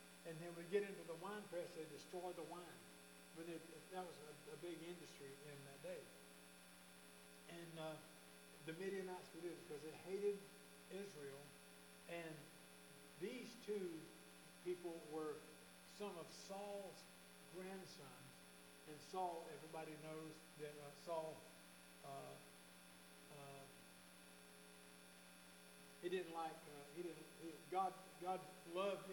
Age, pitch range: 60-79, 140-175 Hz